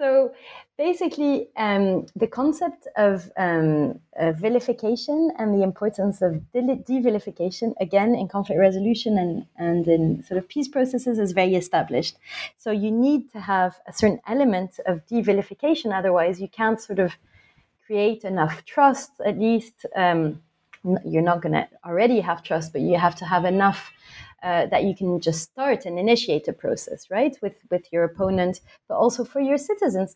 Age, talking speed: 30-49, 165 wpm